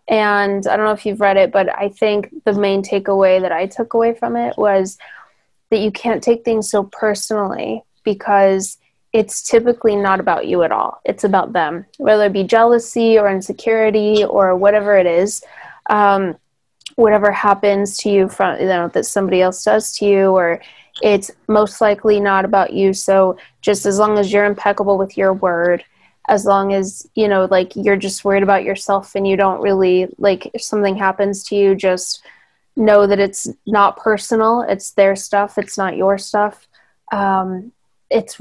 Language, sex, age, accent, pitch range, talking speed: English, female, 20-39, American, 190-210 Hz, 180 wpm